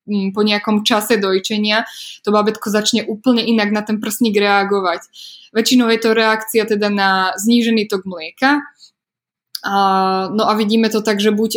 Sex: female